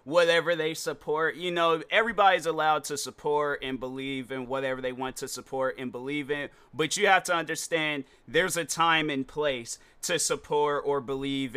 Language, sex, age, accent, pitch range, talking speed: English, male, 30-49, American, 135-165 Hz, 175 wpm